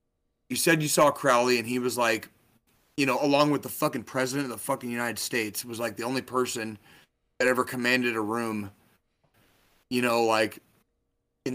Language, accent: English, American